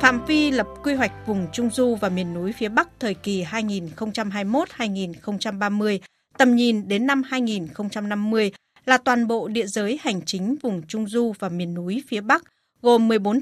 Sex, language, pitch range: female, Vietnamese, 195-250 Hz